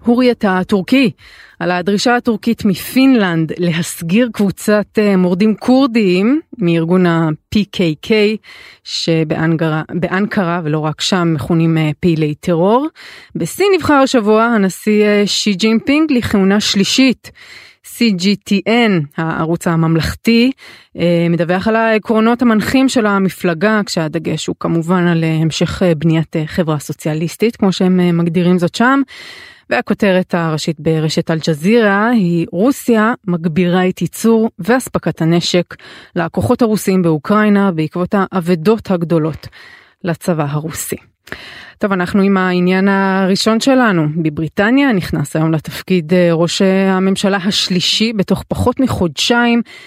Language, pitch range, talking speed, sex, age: Hebrew, 170-220 Hz, 100 wpm, female, 20-39